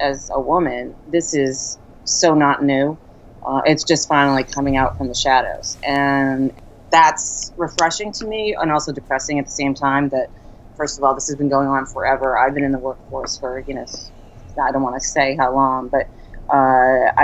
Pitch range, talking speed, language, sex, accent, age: 130-155 Hz, 195 wpm, English, female, American, 30-49